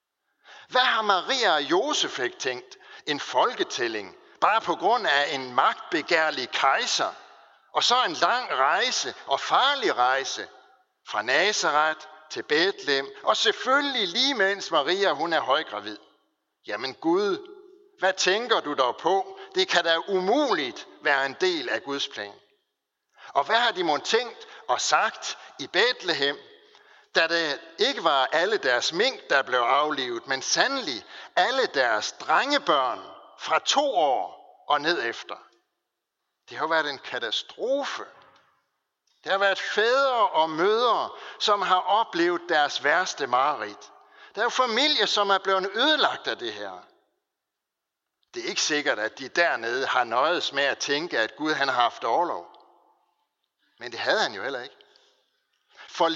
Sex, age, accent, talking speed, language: male, 60-79, native, 145 wpm, Danish